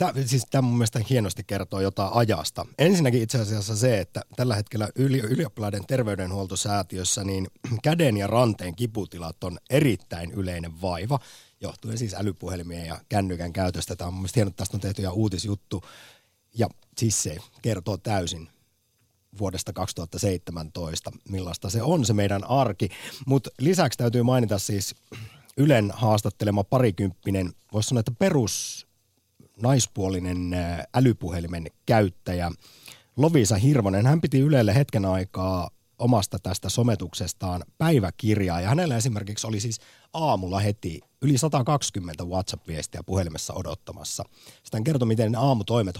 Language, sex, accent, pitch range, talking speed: Finnish, male, native, 95-120 Hz, 130 wpm